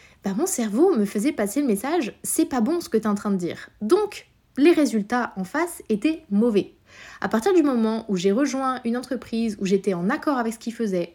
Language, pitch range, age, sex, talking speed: French, 205-275 Hz, 20-39, female, 240 wpm